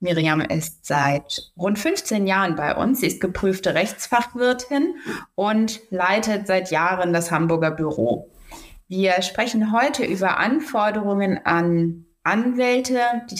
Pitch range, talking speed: 175-230 Hz, 120 wpm